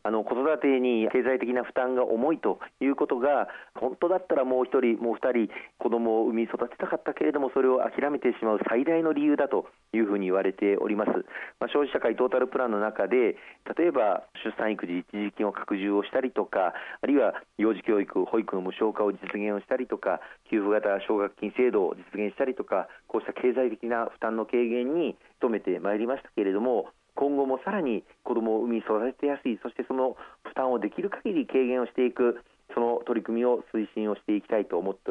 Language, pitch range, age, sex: Japanese, 105-130 Hz, 40-59, male